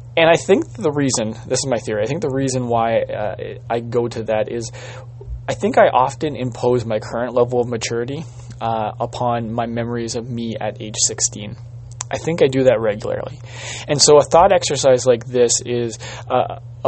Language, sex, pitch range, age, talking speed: English, male, 115-130 Hz, 20-39, 190 wpm